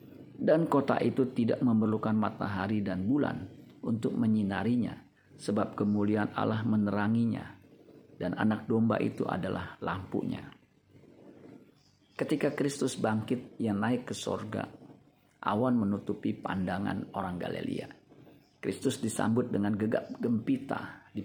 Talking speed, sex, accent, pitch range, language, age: 105 wpm, male, native, 100-120 Hz, Indonesian, 50-69